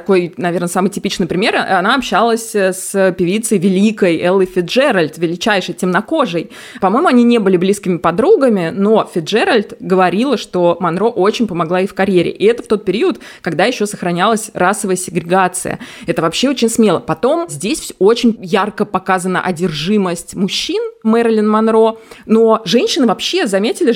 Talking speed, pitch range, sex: 145 wpm, 180-225 Hz, female